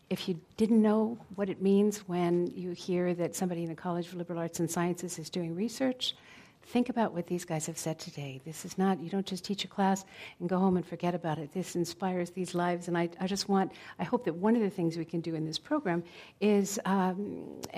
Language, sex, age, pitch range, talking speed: English, female, 60-79, 170-195 Hz, 240 wpm